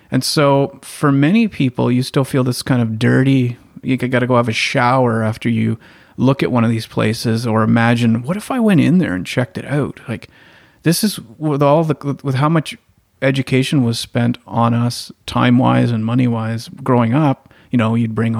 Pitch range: 115-135 Hz